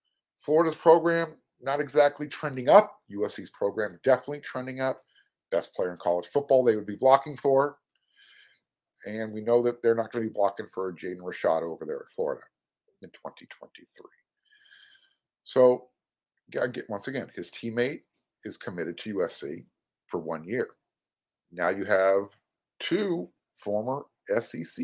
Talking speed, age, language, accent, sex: 140 wpm, 50-69, English, American, male